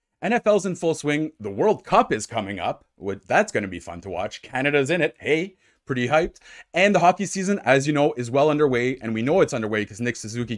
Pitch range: 110-155 Hz